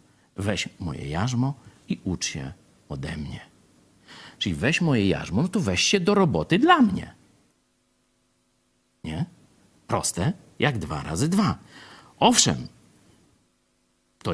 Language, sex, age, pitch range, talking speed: Polish, male, 50-69, 110-175 Hz, 115 wpm